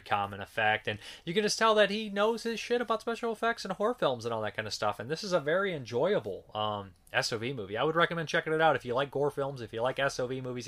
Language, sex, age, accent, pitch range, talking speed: English, male, 30-49, American, 110-145 Hz, 275 wpm